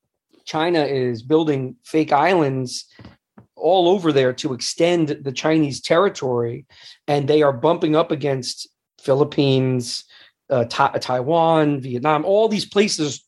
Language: English